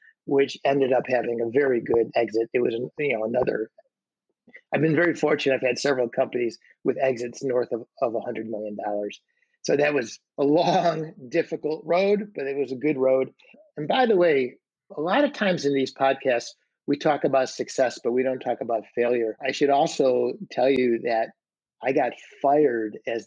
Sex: male